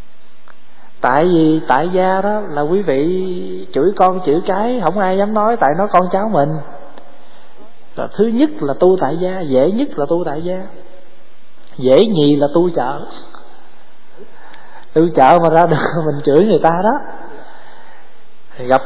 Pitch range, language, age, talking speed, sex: 145-200 Hz, Vietnamese, 20-39, 160 wpm, male